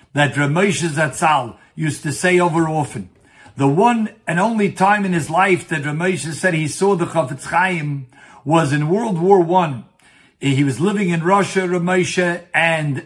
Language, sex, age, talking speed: English, male, 60-79, 165 wpm